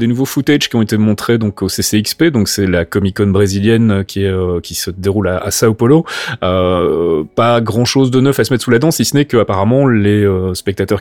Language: French